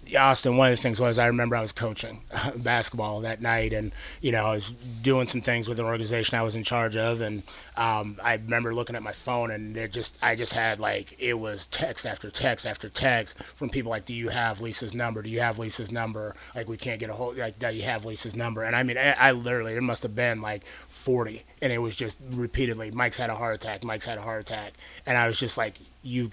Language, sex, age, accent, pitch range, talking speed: English, male, 30-49, American, 110-125 Hz, 255 wpm